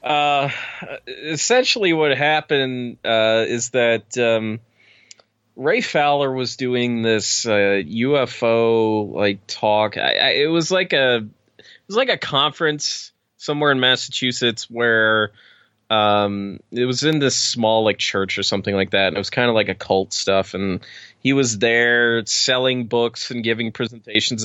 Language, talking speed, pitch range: English, 150 wpm, 105-125 Hz